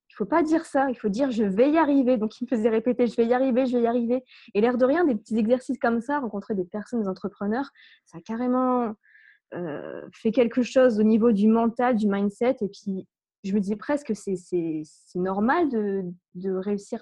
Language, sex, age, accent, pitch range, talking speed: French, female, 20-39, French, 210-255 Hz, 250 wpm